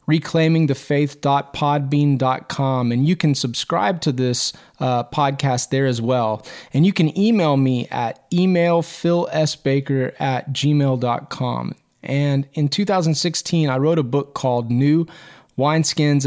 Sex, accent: male, American